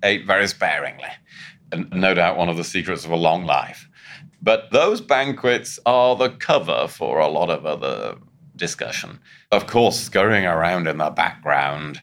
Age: 30-49